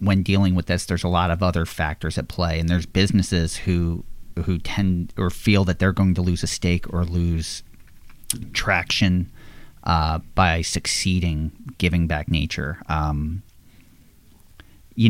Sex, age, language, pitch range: male, 40-59, English, 85-105 Hz